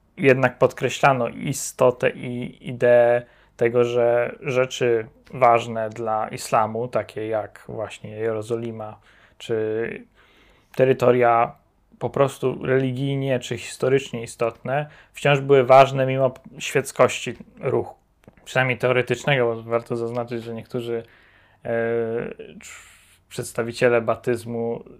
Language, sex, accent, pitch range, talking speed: Polish, male, native, 115-135 Hz, 90 wpm